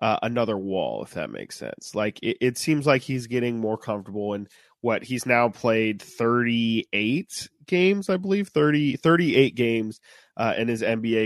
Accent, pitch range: American, 110-130 Hz